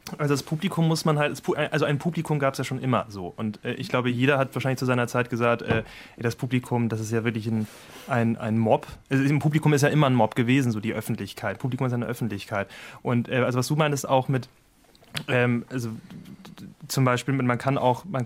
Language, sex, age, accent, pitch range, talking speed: German, male, 30-49, German, 125-150 Hz, 225 wpm